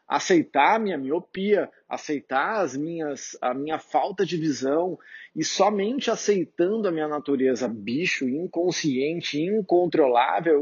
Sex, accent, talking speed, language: male, Brazilian, 120 wpm, Portuguese